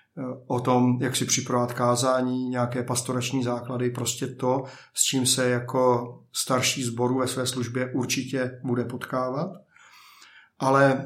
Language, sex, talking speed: Czech, male, 130 wpm